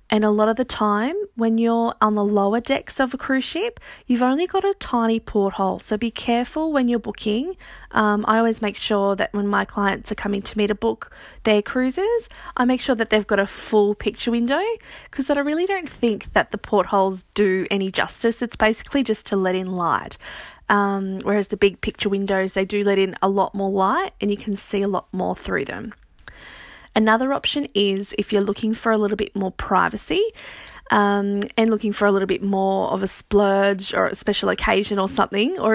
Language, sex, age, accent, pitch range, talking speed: English, female, 20-39, Australian, 200-255 Hz, 210 wpm